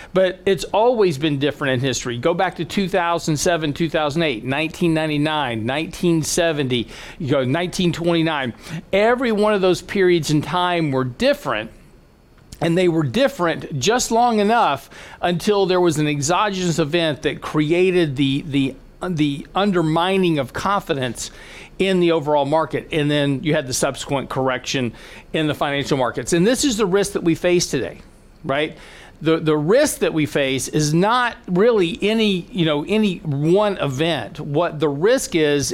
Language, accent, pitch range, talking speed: English, American, 150-185 Hz, 155 wpm